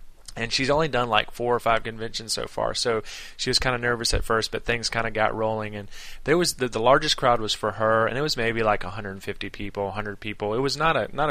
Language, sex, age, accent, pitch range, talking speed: English, male, 20-39, American, 105-120 Hz, 260 wpm